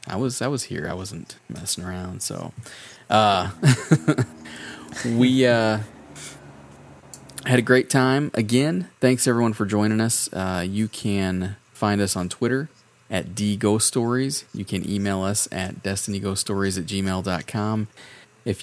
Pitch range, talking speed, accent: 95-110 Hz, 130 wpm, American